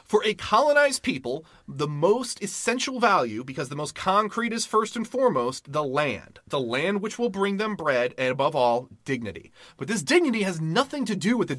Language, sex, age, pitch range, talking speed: English, male, 30-49, 140-225 Hz, 195 wpm